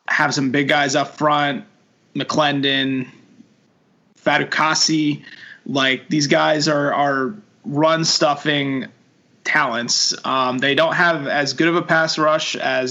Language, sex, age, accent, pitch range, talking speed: English, male, 20-39, American, 130-150 Hz, 125 wpm